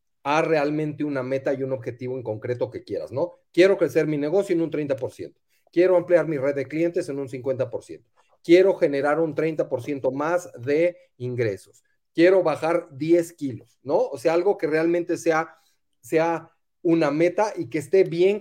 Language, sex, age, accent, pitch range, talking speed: Spanish, male, 40-59, Mexican, 135-175 Hz, 175 wpm